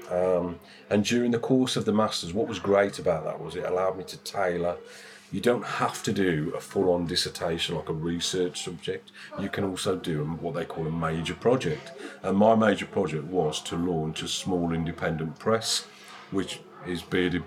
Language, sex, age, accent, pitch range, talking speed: English, male, 40-59, British, 85-115 Hz, 190 wpm